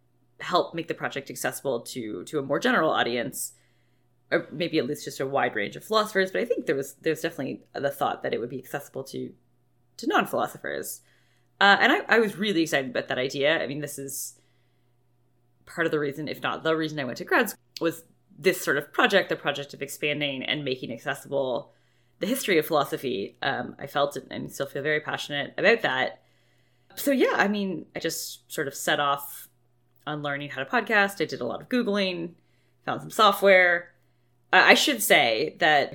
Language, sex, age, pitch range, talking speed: English, female, 20-39, 135-180 Hz, 205 wpm